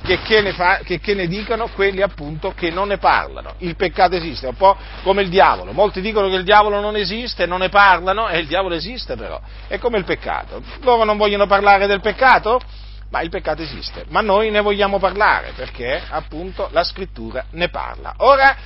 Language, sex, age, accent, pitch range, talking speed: Italian, male, 50-69, native, 160-225 Hz, 205 wpm